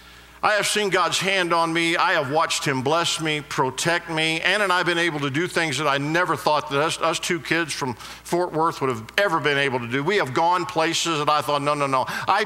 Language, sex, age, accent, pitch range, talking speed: English, male, 50-69, American, 165-205 Hz, 260 wpm